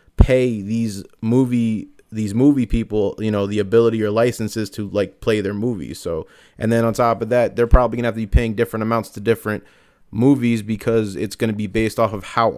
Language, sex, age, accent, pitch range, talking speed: English, male, 20-39, American, 105-120 Hz, 215 wpm